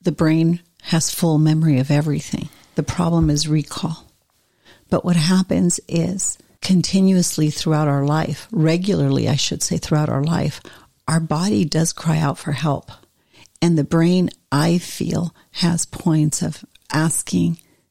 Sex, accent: female, American